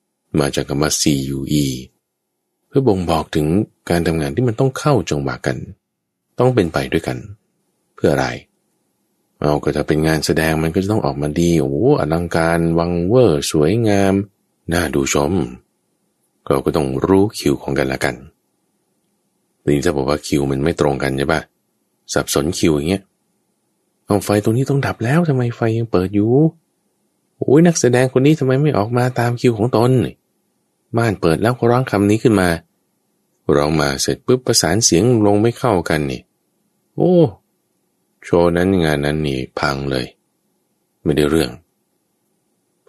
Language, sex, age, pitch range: Thai, male, 20-39, 70-110 Hz